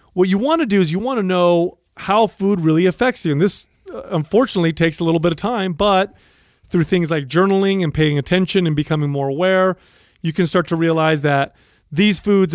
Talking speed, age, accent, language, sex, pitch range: 210 wpm, 30-49, American, English, male, 155-195 Hz